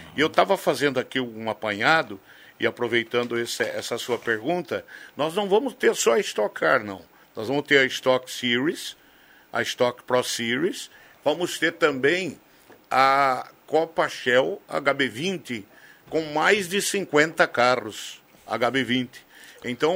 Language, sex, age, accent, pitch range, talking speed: Portuguese, male, 60-79, Brazilian, 125-170 Hz, 135 wpm